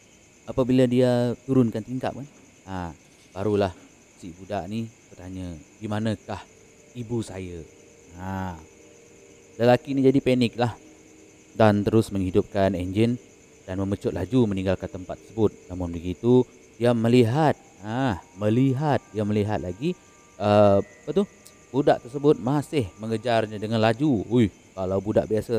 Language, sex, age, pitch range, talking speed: Malay, male, 30-49, 95-120 Hz, 110 wpm